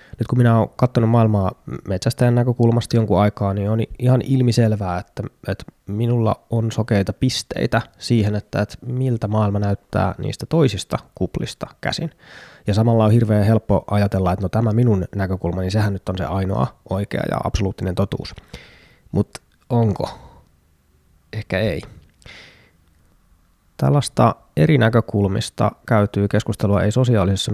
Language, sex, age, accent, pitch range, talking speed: Finnish, male, 20-39, native, 95-115 Hz, 130 wpm